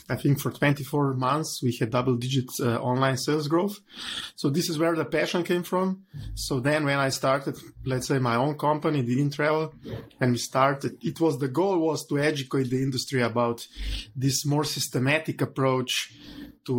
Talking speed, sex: 175 wpm, male